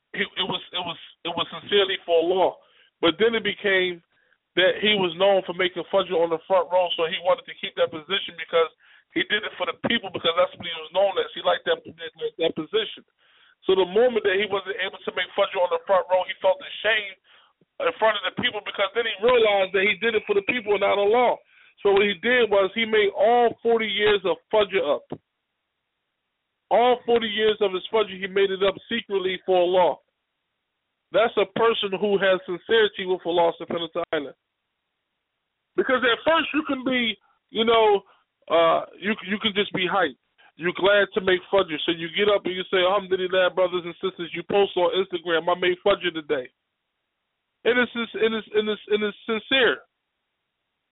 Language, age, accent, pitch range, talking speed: English, 20-39, American, 180-225 Hz, 200 wpm